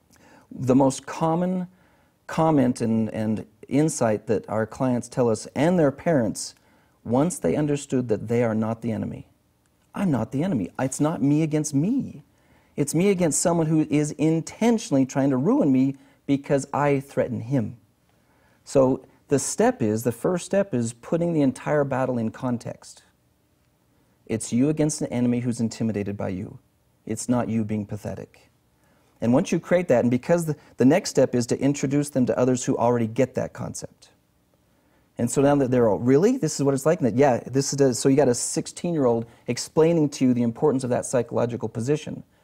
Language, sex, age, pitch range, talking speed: English, male, 40-59, 120-150 Hz, 180 wpm